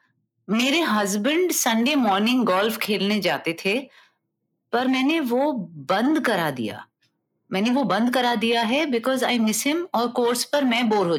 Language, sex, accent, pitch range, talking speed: Hindi, female, native, 180-255 Hz, 160 wpm